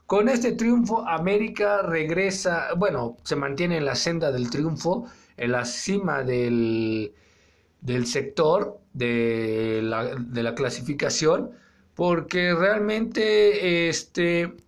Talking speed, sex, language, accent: 110 wpm, male, Spanish, Mexican